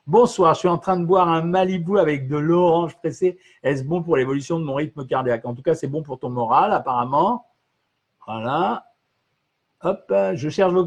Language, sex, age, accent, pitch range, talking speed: French, male, 50-69, French, 150-190 Hz, 195 wpm